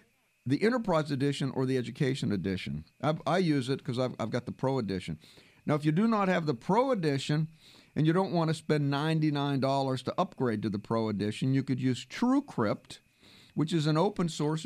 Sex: male